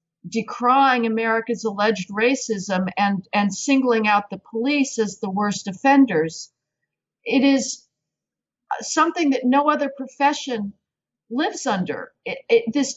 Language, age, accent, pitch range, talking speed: English, 50-69, American, 220-270 Hz, 110 wpm